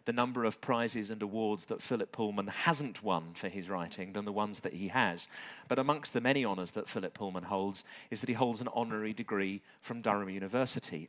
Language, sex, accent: English, male, British